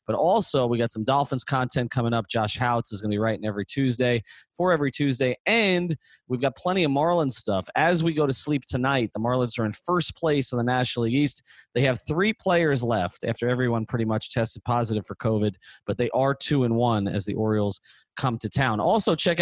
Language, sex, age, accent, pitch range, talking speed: English, male, 30-49, American, 120-160 Hz, 225 wpm